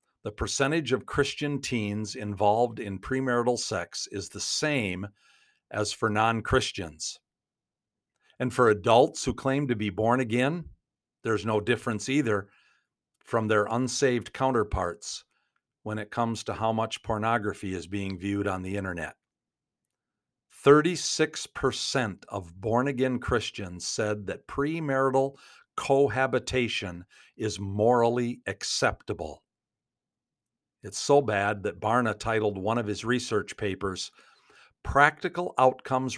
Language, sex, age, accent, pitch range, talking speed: English, male, 50-69, American, 100-125 Hz, 115 wpm